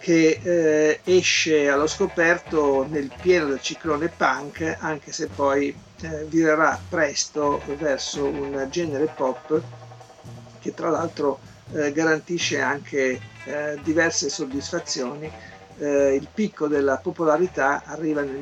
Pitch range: 140-170 Hz